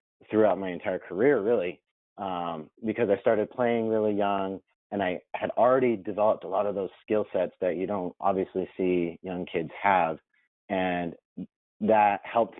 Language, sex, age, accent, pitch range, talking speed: English, male, 30-49, American, 90-110 Hz, 160 wpm